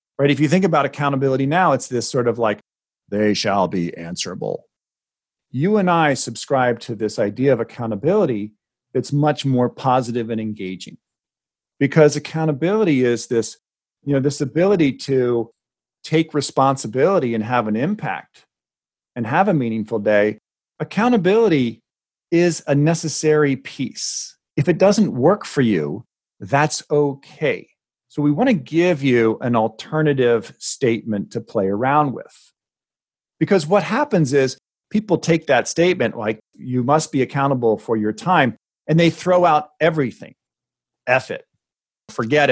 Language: English